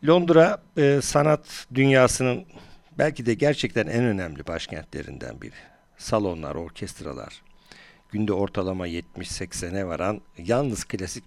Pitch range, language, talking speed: 95-130 Hz, Turkish, 95 wpm